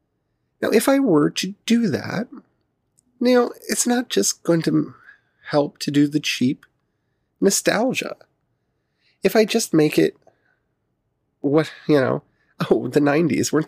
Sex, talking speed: male, 135 wpm